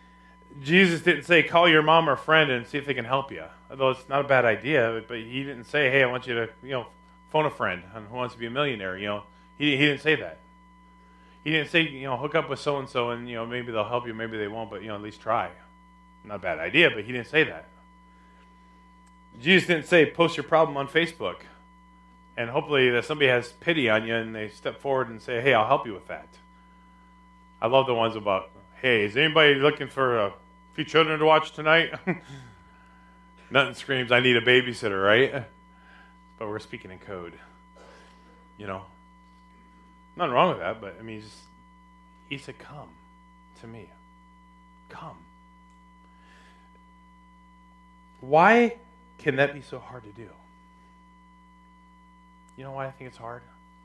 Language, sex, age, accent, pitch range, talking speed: English, male, 30-49, American, 90-145 Hz, 190 wpm